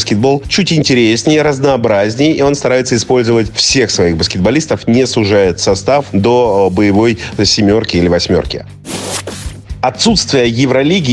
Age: 30-49